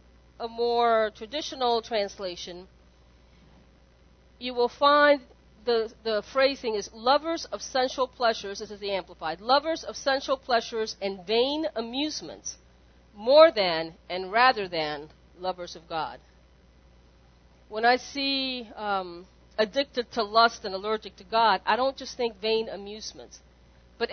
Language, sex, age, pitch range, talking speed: English, female, 40-59, 175-255 Hz, 130 wpm